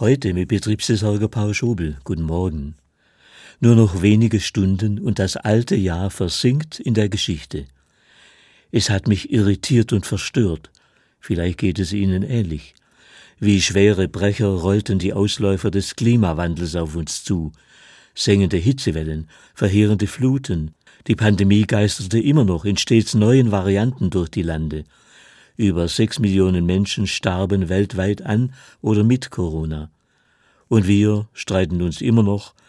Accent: German